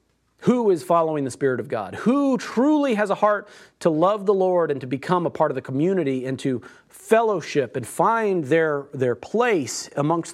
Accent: American